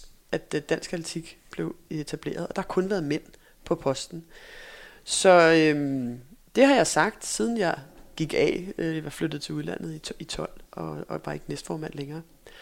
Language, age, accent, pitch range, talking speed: Danish, 30-49, native, 150-190 Hz, 185 wpm